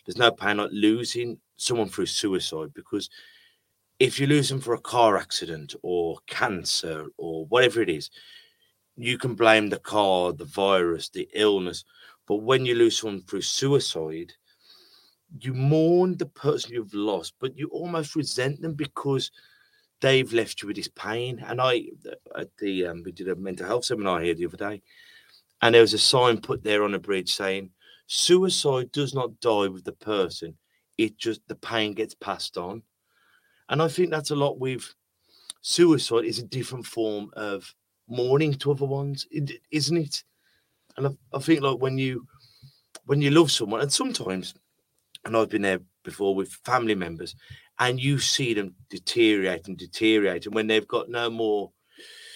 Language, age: English, 30-49